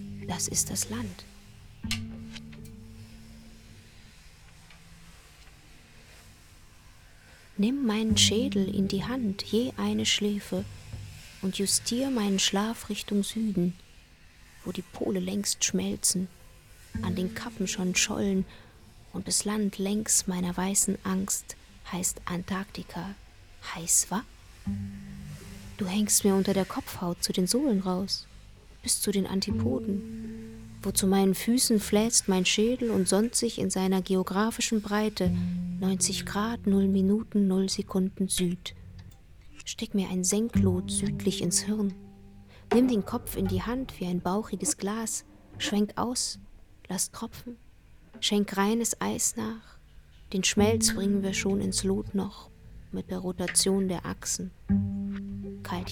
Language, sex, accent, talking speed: German, female, German, 120 wpm